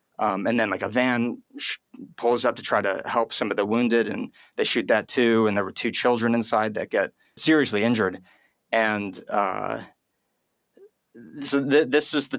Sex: male